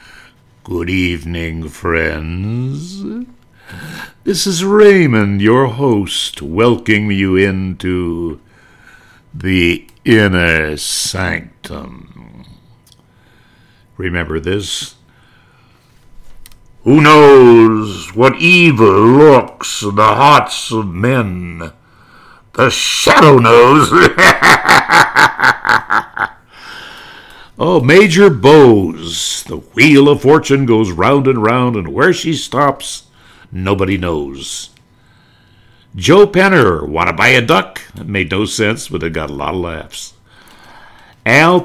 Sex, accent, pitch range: male, American, 95-130 Hz